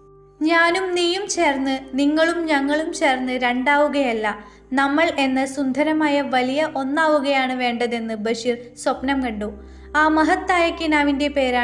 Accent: native